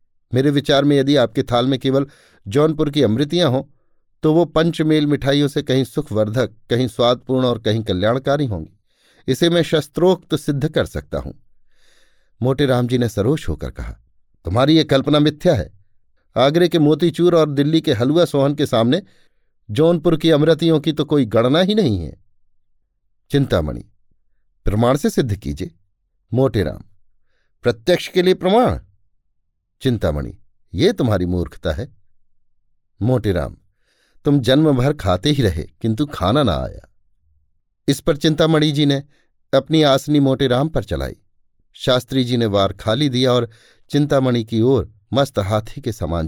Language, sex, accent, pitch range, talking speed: Hindi, male, native, 95-145 Hz, 145 wpm